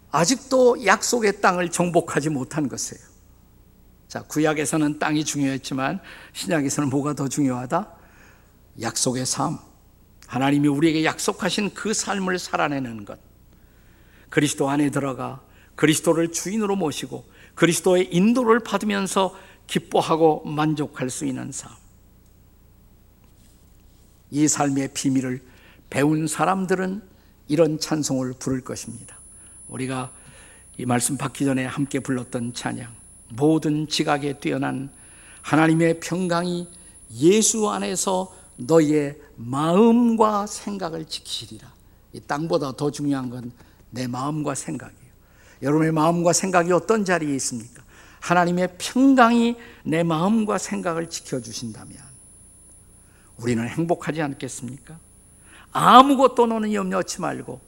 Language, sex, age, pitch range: Korean, male, 50-69, 125-175 Hz